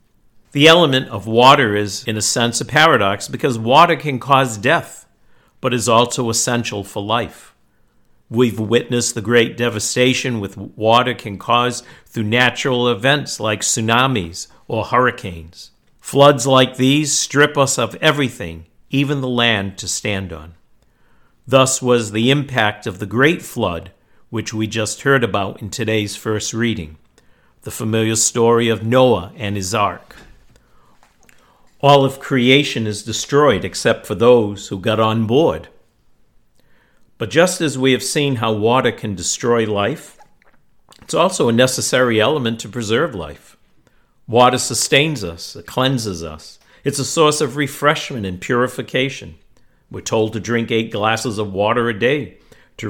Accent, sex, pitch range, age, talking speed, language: American, male, 105-130 Hz, 50-69, 145 wpm, English